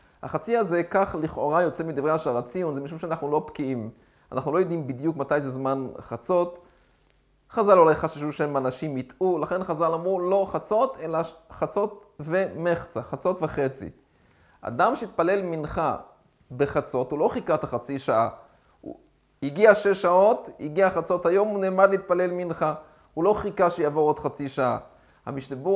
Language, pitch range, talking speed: Hebrew, 145-185 Hz, 150 wpm